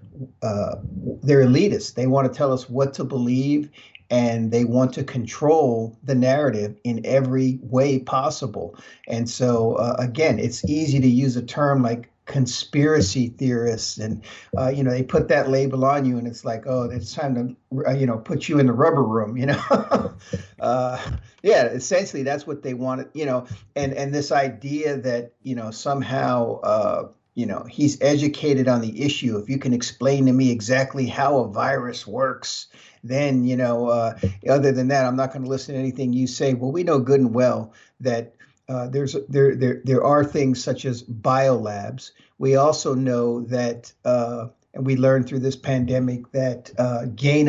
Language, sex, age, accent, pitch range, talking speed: English, male, 50-69, American, 120-135 Hz, 185 wpm